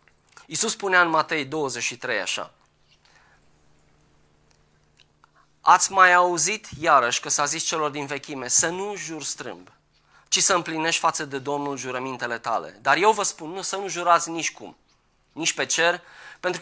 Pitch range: 135-195 Hz